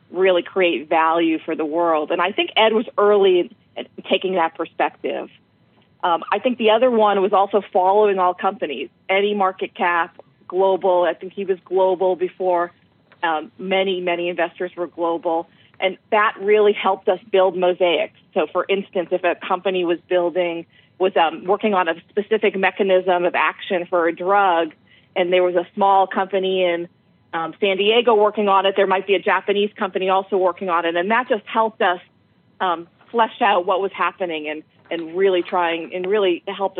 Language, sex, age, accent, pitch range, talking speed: English, female, 40-59, American, 170-195 Hz, 180 wpm